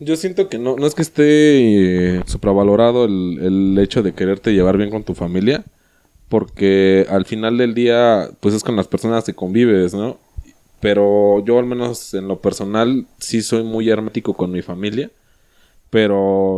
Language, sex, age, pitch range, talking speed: Spanish, male, 20-39, 100-125 Hz, 170 wpm